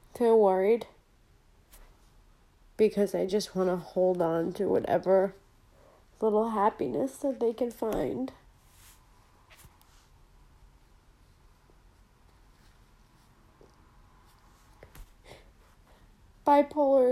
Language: English